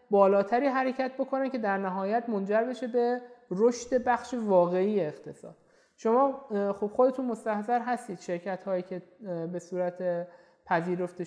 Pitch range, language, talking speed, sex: 185-235 Hz, Persian, 120 wpm, male